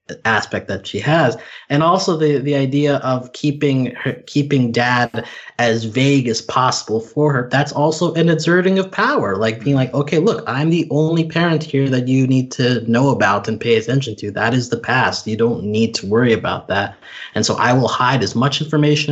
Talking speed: 205 wpm